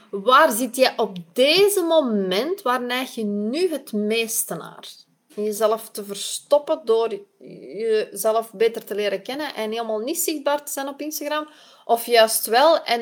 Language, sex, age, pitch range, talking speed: Dutch, female, 20-39, 205-255 Hz, 155 wpm